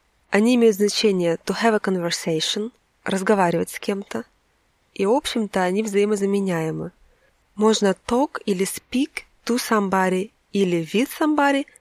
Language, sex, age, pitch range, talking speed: Russian, female, 20-39, 180-220 Hz, 120 wpm